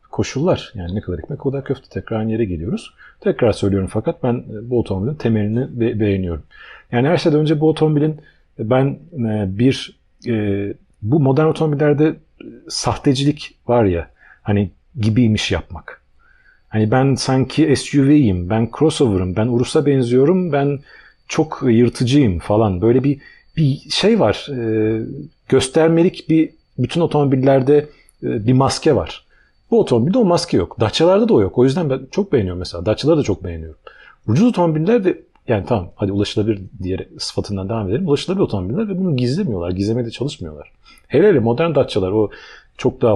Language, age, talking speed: Turkish, 40-59, 145 wpm